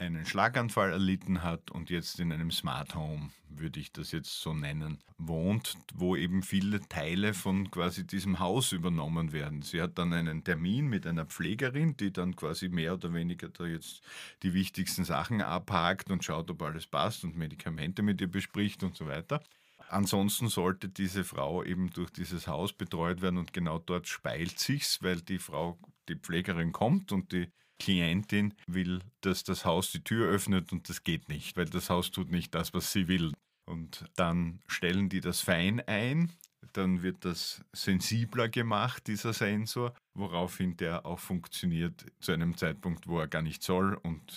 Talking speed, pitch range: 175 wpm, 85-100 Hz